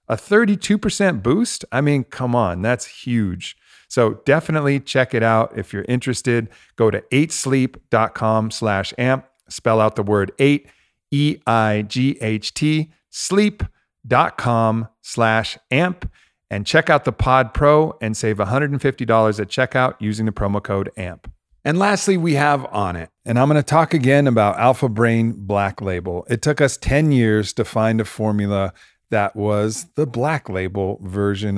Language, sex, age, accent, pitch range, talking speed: English, male, 40-59, American, 100-135 Hz, 150 wpm